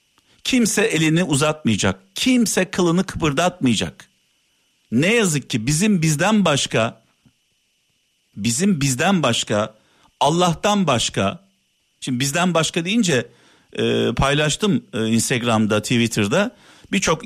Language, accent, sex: Turkish, native, male